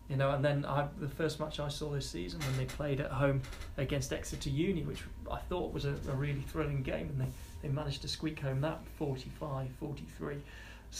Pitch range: 130-150 Hz